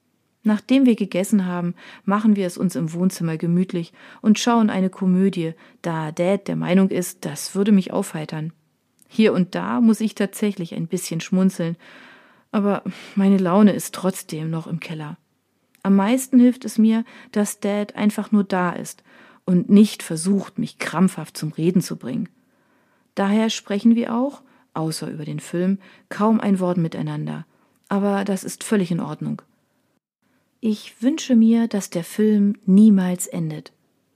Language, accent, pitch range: German, German, 175-225 Hz